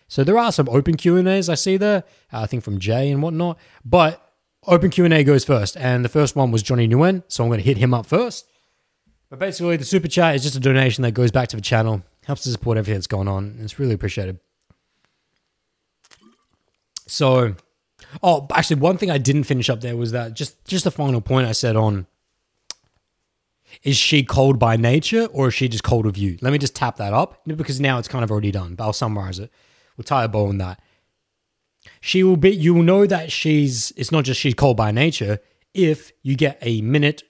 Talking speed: 215 wpm